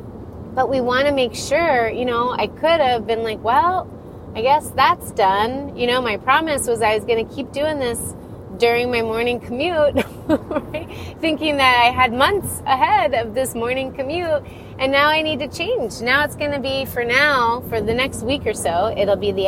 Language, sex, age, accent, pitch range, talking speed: English, female, 30-49, American, 210-265 Hz, 205 wpm